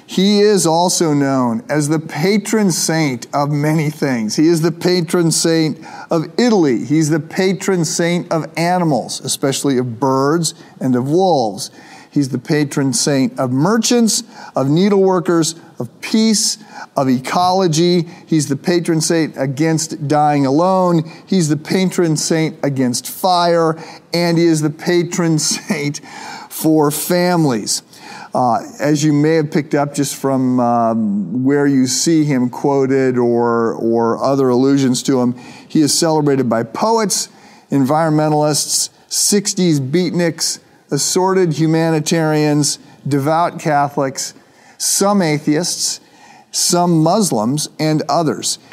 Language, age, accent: English, 50-69, American